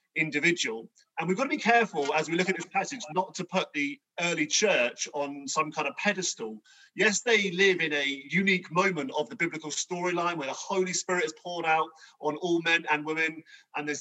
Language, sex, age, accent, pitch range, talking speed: English, male, 30-49, British, 150-200 Hz, 210 wpm